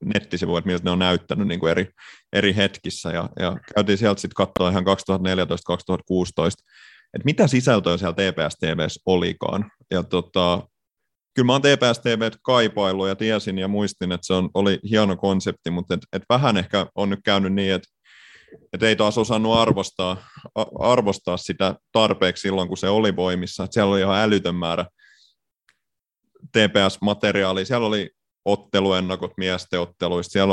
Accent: native